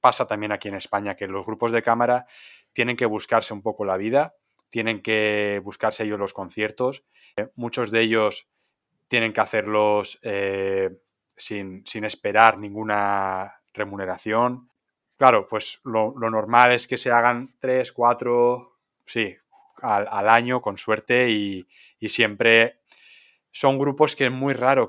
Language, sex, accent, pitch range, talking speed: Spanish, male, Spanish, 105-120 Hz, 150 wpm